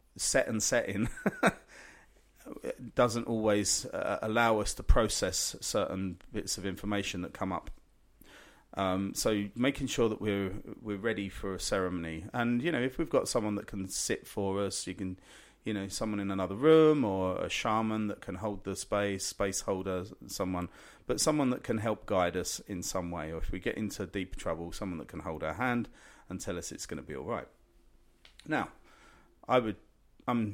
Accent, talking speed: British, 185 wpm